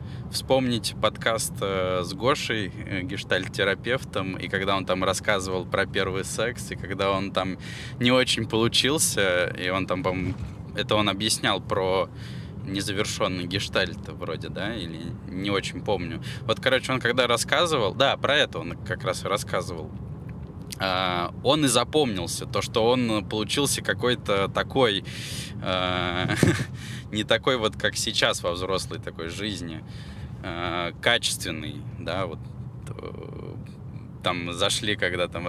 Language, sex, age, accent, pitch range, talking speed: Russian, male, 20-39, native, 90-120 Hz, 130 wpm